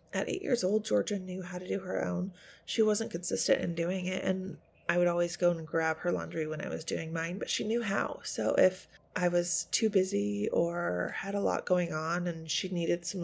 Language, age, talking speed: English, 20-39, 230 wpm